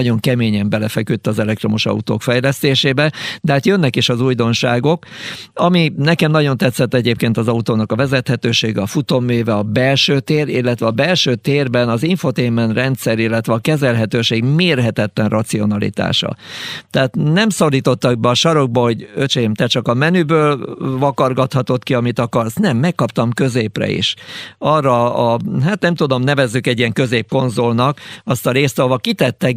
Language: Hungarian